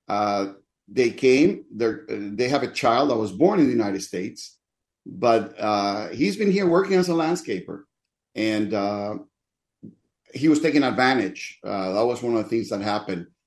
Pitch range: 100-135 Hz